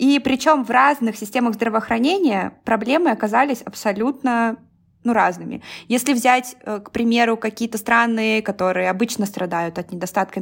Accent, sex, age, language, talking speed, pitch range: native, female, 20-39, Russian, 125 wpm, 190-235 Hz